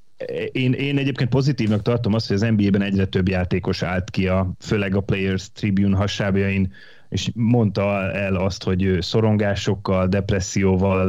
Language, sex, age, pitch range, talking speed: Hungarian, male, 30-49, 95-115 Hz, 150 wpm